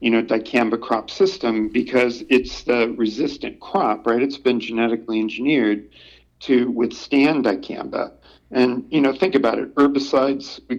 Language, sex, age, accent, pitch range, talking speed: English, male, 50-69, American, 110-140 Hz, 145 wpm